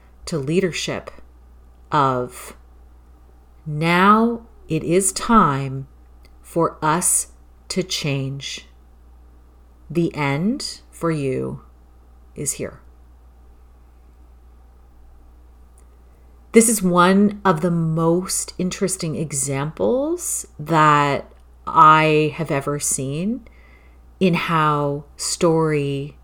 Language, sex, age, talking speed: English, female, 40-59, 75 wpm